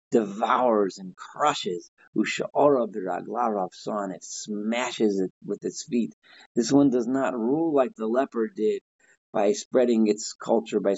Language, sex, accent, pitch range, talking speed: English, male, American, 100-120 Hz, 140 wpm